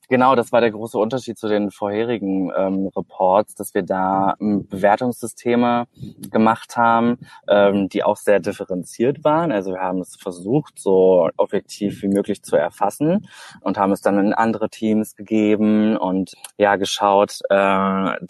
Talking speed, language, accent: 155 wpm, German, German